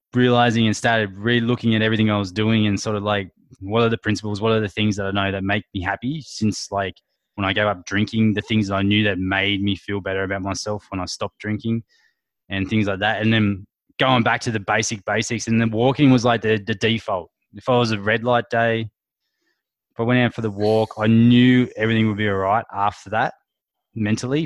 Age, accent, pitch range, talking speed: 20-39, Australian, 100-115 Hz, 235 wpm